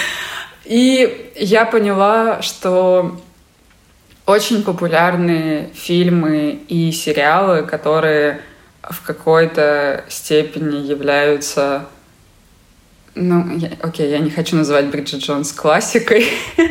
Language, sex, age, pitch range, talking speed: Russian, female, 20-39, 145-175 Hz, 85 wpm